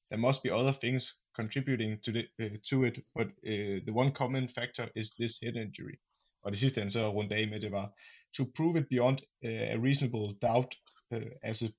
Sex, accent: male, native